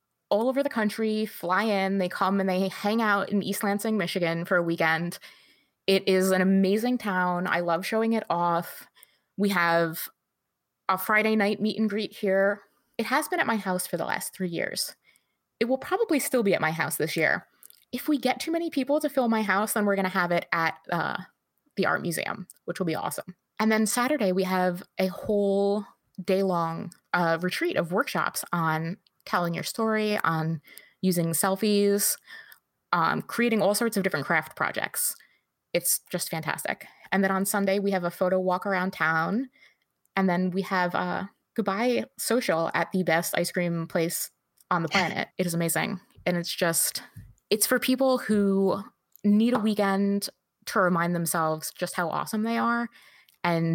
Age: 20-39